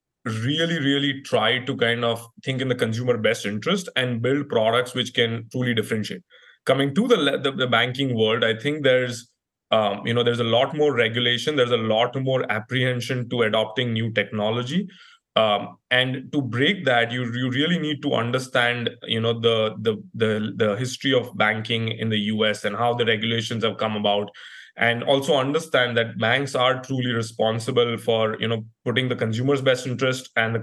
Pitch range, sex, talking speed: 115-130 Hz, male, 180 wpm